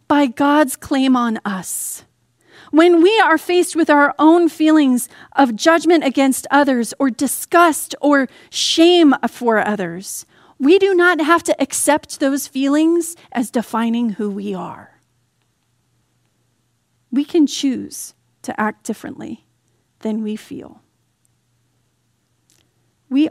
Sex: female